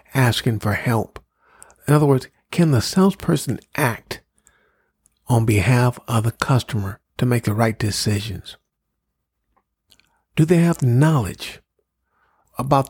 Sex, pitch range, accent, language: male, 110-140 Hz, American, English